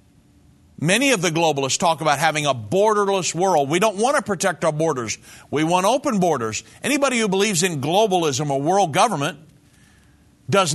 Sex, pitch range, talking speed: male, 155-195 Hz, 165 wpm